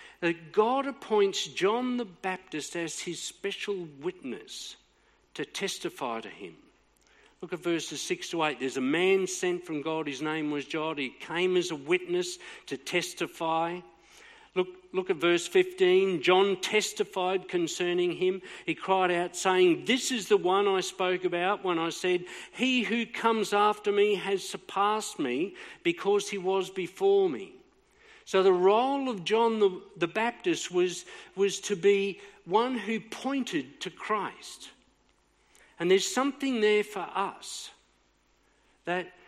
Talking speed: 145 wpm